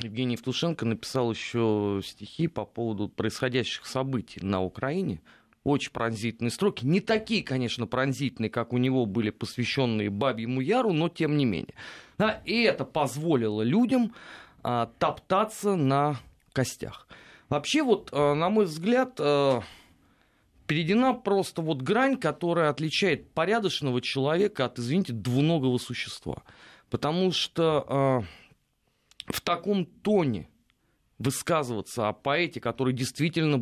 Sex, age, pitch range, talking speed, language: male, 30-49, 120-175 Hz, 110 wpm, Russian